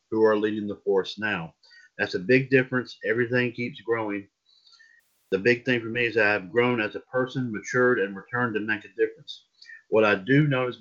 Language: English